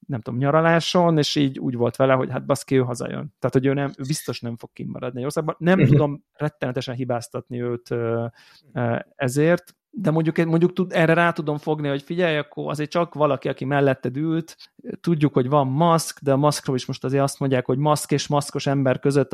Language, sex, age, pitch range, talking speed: Hungarian, male, 30-49, 130-150 Hz, 195 wpm